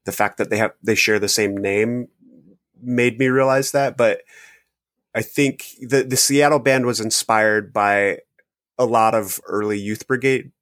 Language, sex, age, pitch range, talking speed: English, male, 30-49, 110-135 Hz, 170 wpm